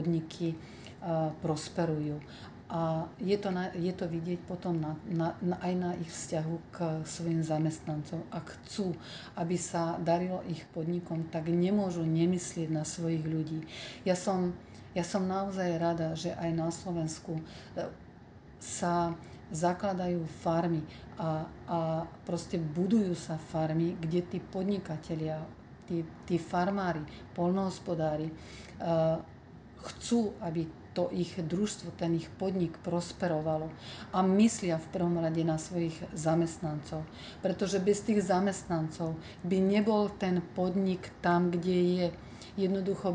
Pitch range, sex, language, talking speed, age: 165-185 Hz, female, Slovak, 125 wpm, 40-59